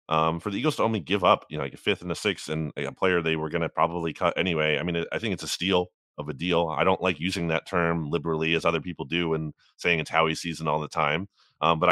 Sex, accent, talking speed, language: male, American, 285 wpm, English